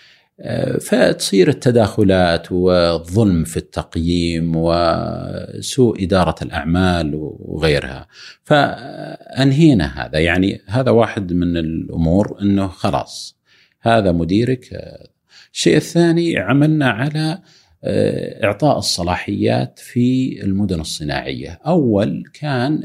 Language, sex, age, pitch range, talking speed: Arabic, male, 50-69, 85-120 Hz, 80 wpm